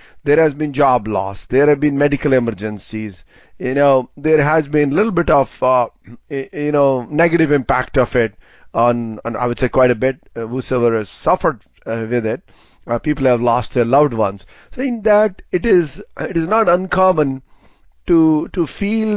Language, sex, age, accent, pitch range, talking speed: English, male, 30-49, Indian, 125-160 Hz, 185 wpm